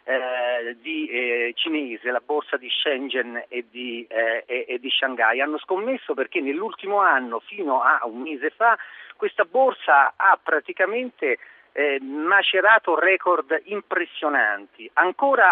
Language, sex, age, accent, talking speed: Italian, male, 50-69, native, 130 wpm